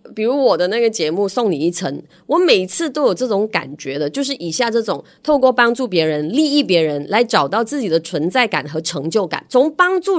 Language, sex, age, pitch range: Chinese, female, 20-39, 175-260 Hz